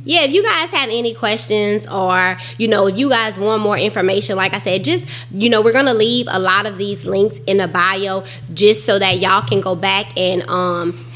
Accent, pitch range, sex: American, 195-240 Hz, female